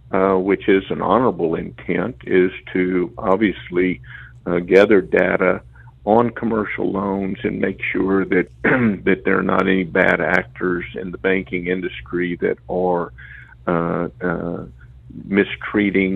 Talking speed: 130 wpm